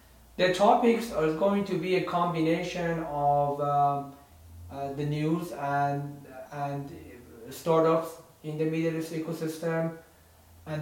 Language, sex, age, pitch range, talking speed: English, male, 40-59, 145-165 Hz, 120 wpm